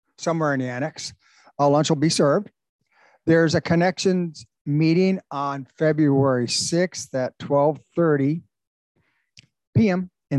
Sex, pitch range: male, 135-175 Hz